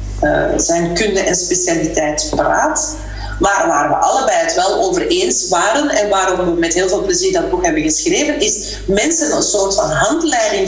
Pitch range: 195-320 Hz